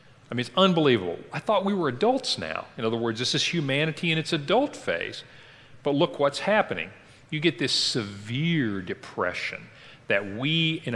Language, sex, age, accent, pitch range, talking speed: English, male, 40-59, American, 120-185 Hz, 175 wpm